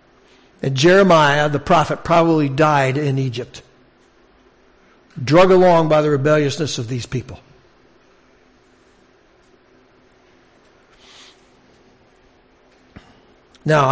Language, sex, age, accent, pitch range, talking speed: English, male, 60-79, American, 140-185 Hz, 75 wpm